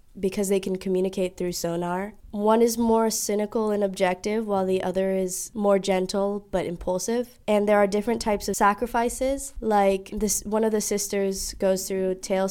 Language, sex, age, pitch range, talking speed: English, female, 10-29, 185-210 Hz, 175 wpm